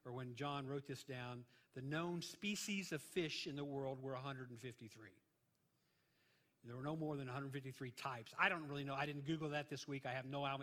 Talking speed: 205 wpm